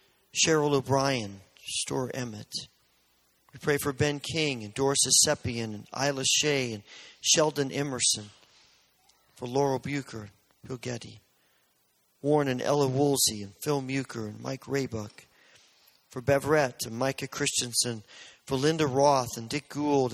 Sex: male